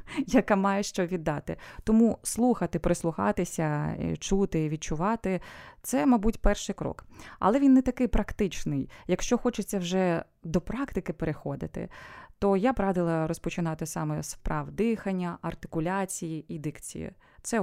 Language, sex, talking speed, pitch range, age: Ukrainian, female, 130 wpm, 160-195 Hz, 20-39